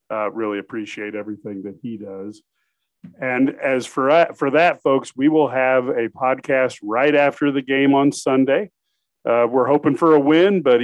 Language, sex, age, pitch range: English, male, 40-59, 115-140 Hz